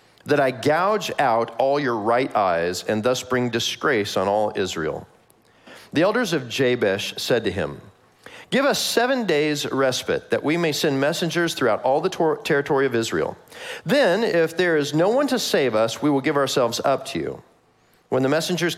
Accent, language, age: American, English, 40-59